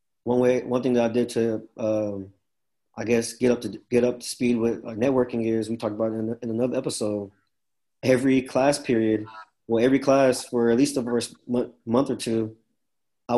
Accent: American